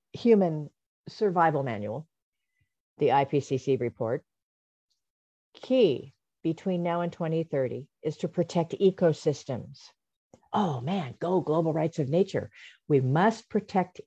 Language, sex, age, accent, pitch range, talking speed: English, female, 50-69, American, 135-180 Hz, 105 wpm